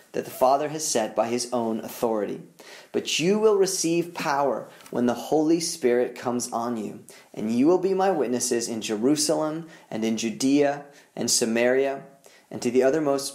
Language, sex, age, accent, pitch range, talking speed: English, male, 30-49, American, 120-165 Hz, 170 wpm